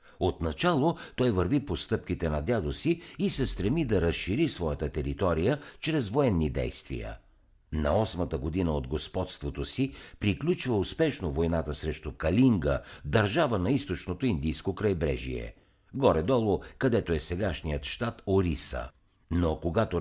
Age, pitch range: 60-79, 80-120 Hz